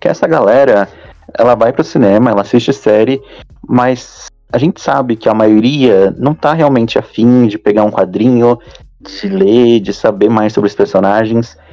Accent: Brazilian